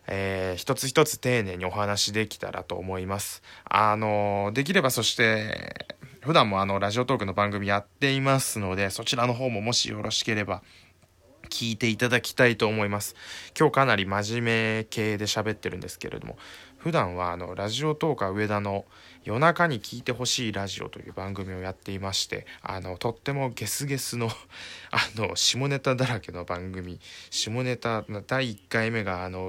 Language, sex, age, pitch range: Japanese, male, 20-39, 95-125 Hz